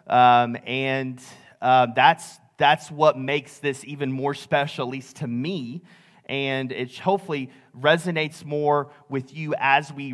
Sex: male